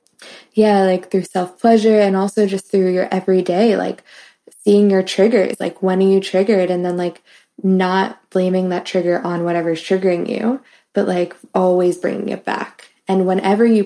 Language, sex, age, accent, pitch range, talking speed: English, female, 20-39, American, 175-200 Hz, 170 wpm